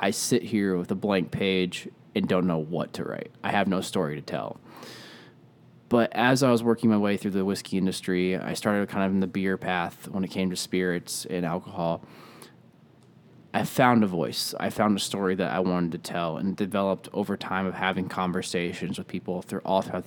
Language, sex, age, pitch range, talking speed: English, male, 20-39, 95-110 Hz, 210 wpm